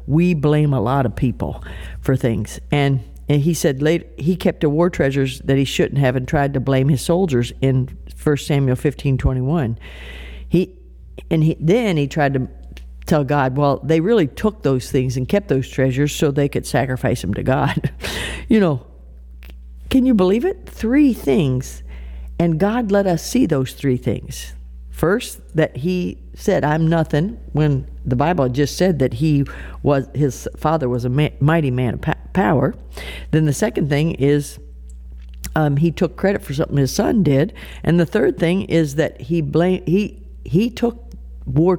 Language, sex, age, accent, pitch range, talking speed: English, female, 50-69, American, 120-165 Hz, 180 wpm